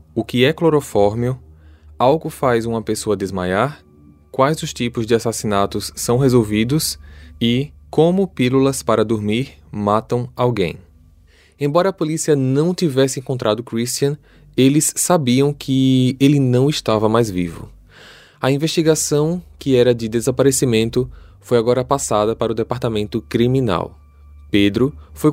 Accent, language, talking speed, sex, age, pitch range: Brazilian, Portuguese, 125 wpm, male, 20-39, 105-140 Hz